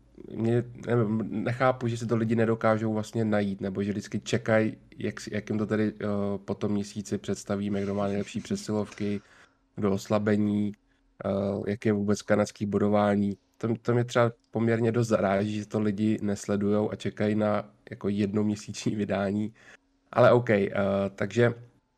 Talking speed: 155 wpm